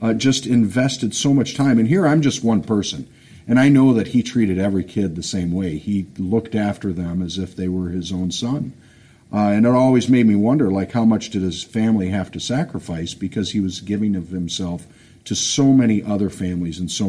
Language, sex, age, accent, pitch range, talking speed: English, male, 50-69, American, 90-110 Hz, 220 wpm